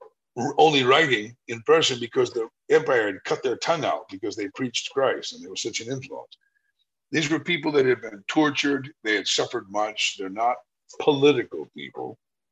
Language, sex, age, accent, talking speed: English, male, 50-69, American, 175 wpm